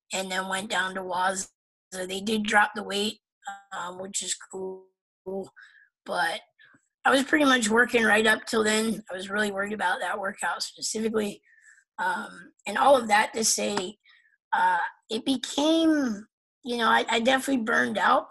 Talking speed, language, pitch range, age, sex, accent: 165 wpm, English, 190-230 Hz, 20-39, female, American